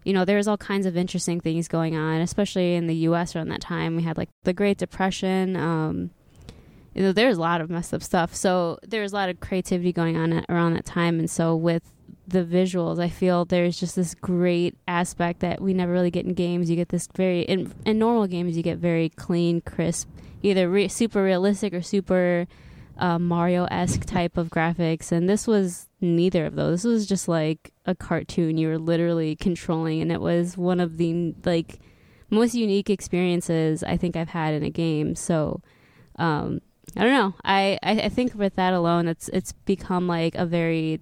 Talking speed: 200 wpm